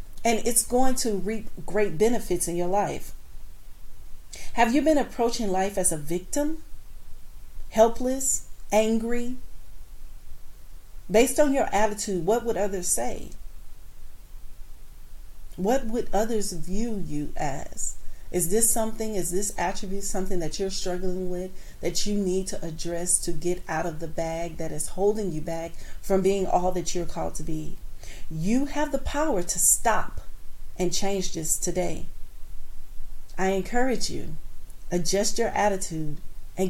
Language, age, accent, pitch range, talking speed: English, 40-59, American, 175-210 Hz, 140 wpm